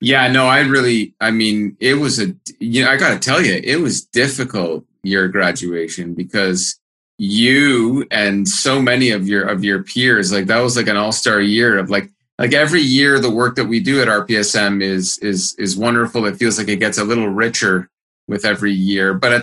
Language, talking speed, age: English, 205 wpm, 30-49